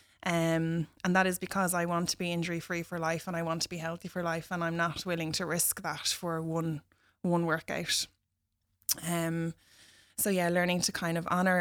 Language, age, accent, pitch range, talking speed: English, 20-39, Irish, 165-175 Hz, 205 wpm